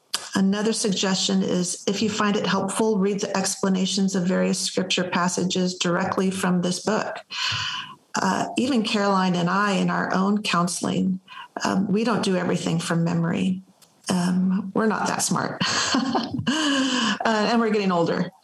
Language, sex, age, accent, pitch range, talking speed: English, female, 40-59, American, 180-205 Hz, 145 wpm